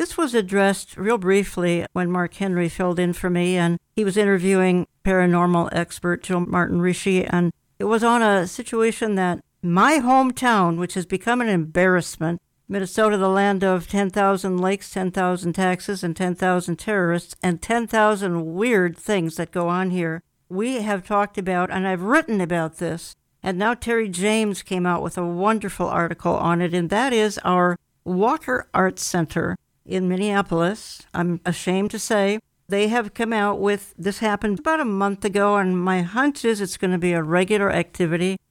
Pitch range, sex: 175-210 Hz, female